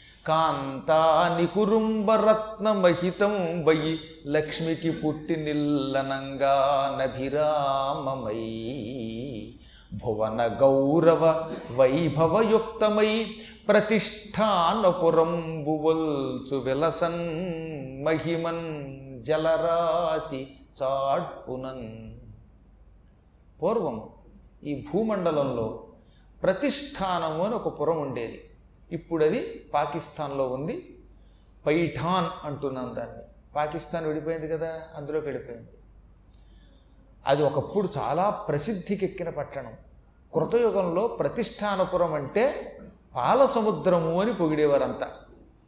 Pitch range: 135-185 Hz